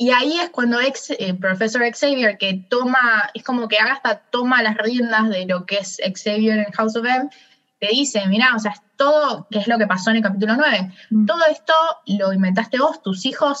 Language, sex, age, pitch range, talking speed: Spanish, female, 10-29, 195-260 Hz, 220 wpm